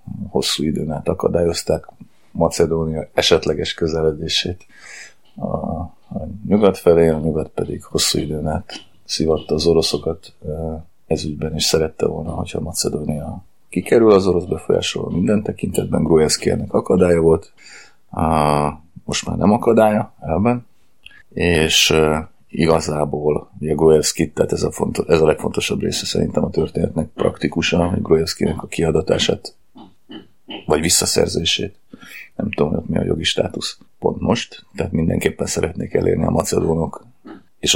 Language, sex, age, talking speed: Hungarian, male, 30-49, 120 wpm